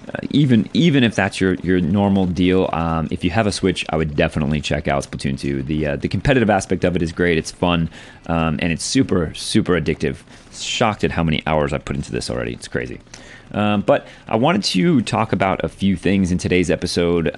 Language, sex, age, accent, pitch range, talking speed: English, male, 30-49, American, 80-100 Hz, 220 wpm